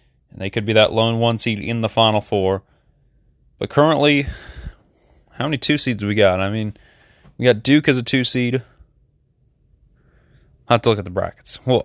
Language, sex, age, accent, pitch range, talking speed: English, male, 20-39, American, 100-125 Hz, 195 wpm